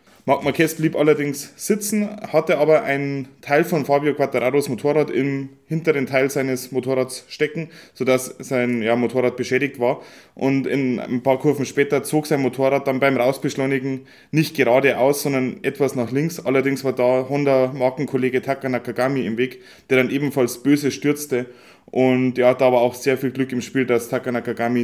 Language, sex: German, male